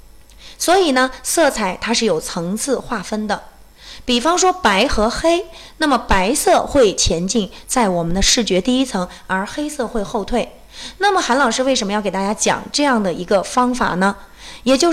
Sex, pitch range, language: female, 195-265 Hz, Chinese